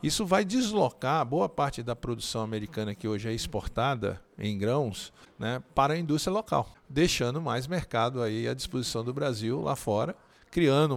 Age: 50-69